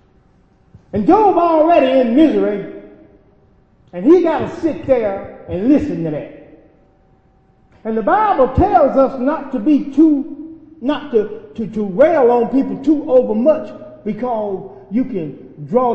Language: English